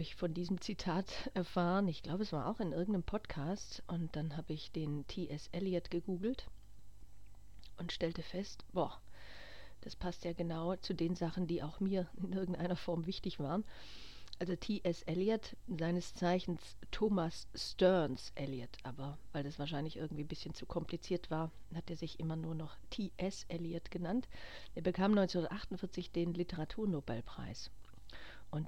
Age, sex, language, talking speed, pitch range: 50-69, female, German, 155 wpm, 150-180 Hz